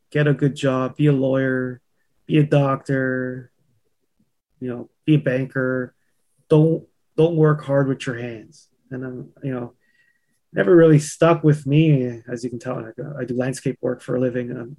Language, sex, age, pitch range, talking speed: English, male, 20-39, 125-150 Hz, 180 wpm